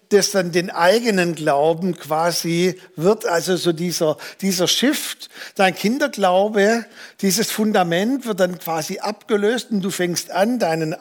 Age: 50-69